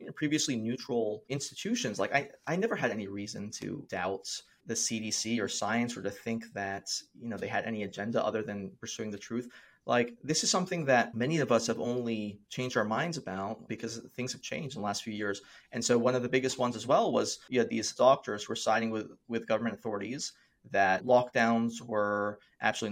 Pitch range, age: 110-140 Hz, 30-49